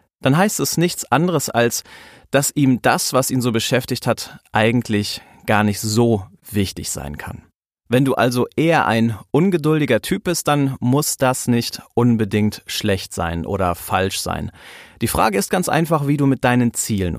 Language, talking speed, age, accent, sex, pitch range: German, 170 wpm, 30-49, German, male, 110-145 Hz